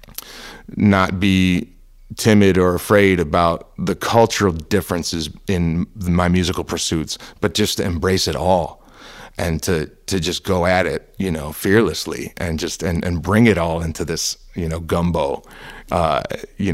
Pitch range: 80-95 Hz